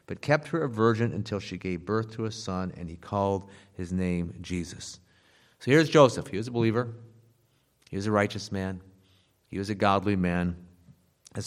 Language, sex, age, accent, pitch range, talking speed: English, male, 50-69, American, 90-120 Hz, 190 wpm